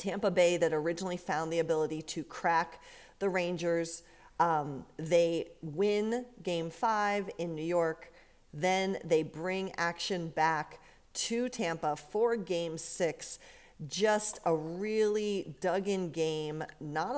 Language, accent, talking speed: English, American, 120 wpm